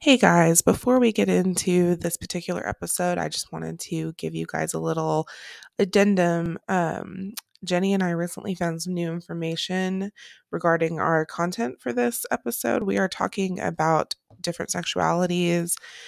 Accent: American